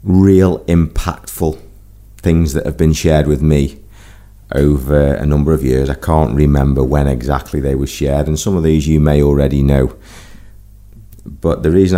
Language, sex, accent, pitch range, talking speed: English, male, British, 75-100 Hz, 165 wpm